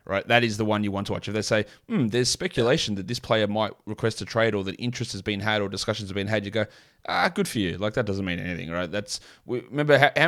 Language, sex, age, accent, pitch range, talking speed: English, male, 20-39, Australian, 100-125 Hz, 280 wpm